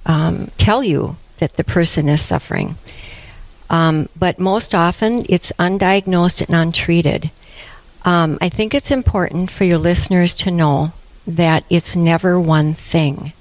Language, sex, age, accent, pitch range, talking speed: English, female, 60-79, American, 160-190 Hz, 140 wpm